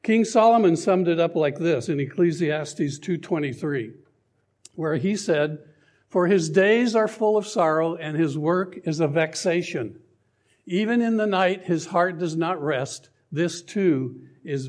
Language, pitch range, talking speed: English, 155-190 Hz, 155 wpm